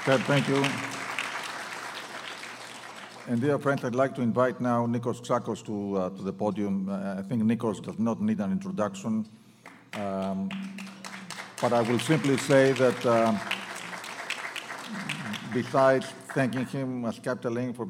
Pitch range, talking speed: 110-130 Hz, 135 wpm